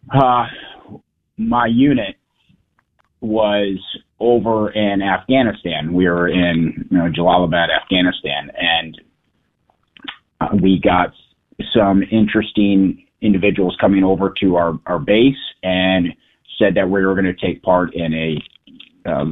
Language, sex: English, male